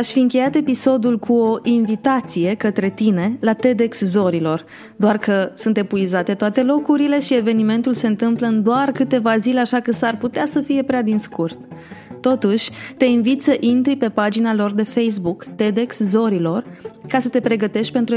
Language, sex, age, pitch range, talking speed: Romanian, female, 20-39, 195-240 Hz, 170 wpm